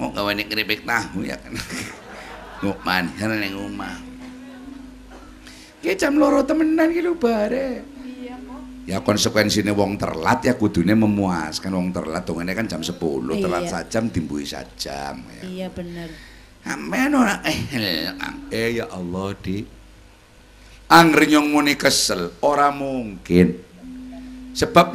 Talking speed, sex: 90 wpm, male